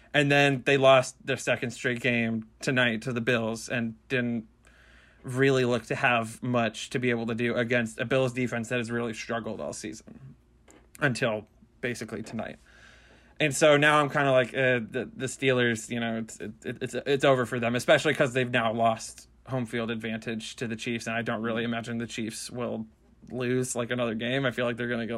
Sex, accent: male, American